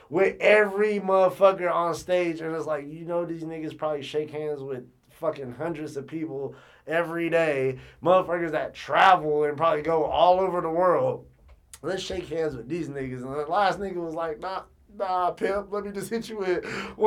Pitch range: 150-195 Hz